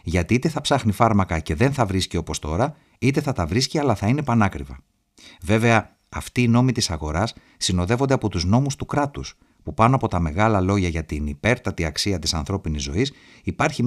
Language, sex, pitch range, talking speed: Greek, male, 90-130 Hz, 195 wpm